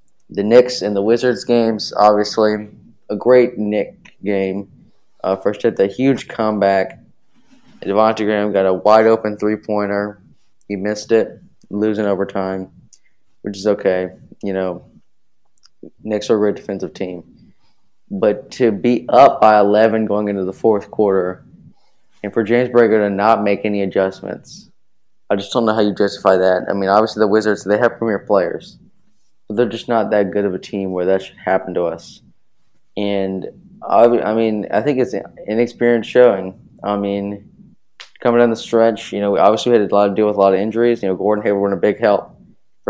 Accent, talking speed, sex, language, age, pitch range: American, 180 wpm, male, English, 20-39, 100-110 Hz